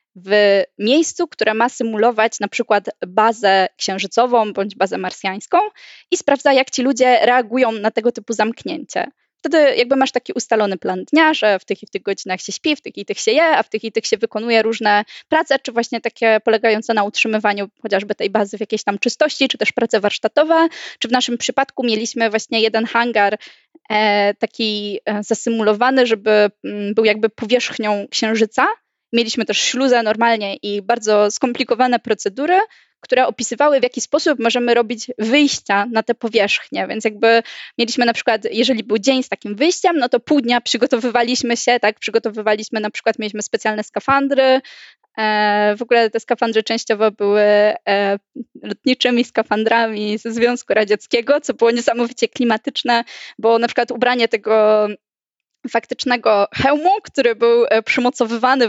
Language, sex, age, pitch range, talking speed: Polish, female, 20-39, 215-255 Hz, 155 wpm